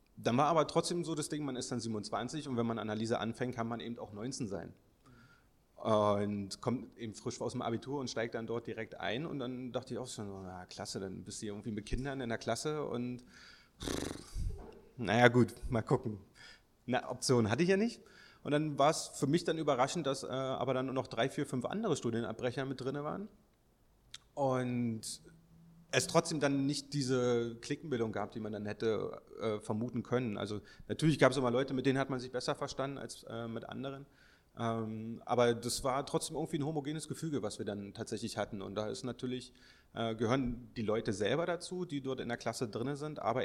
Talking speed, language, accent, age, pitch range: 205 wpm, German, German, 30-49, 115-135 Hz